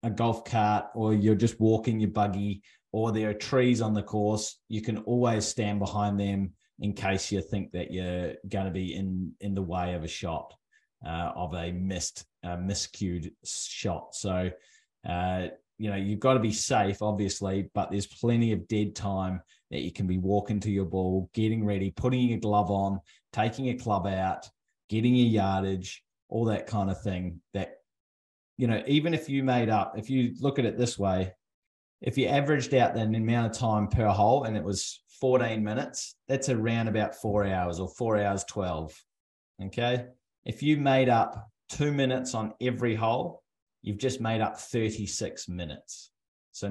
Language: English